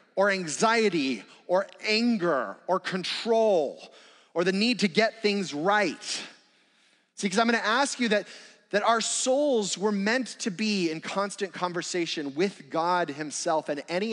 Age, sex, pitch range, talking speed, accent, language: 30-49, male, 140-200 Hz, 150 wpm, American, English